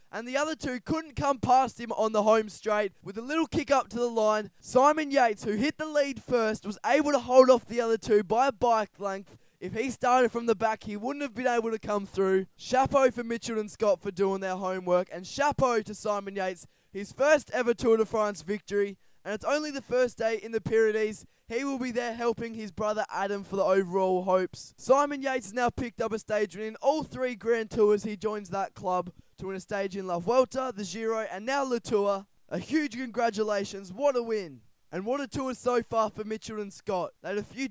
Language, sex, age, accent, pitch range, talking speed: English, male, 10-29, Australian, 195-245 Hz, 230 wpm